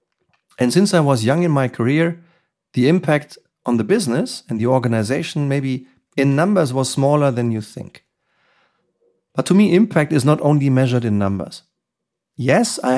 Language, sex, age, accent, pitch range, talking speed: German, male, 40-59, German, 125-170 Hz, 165 wpm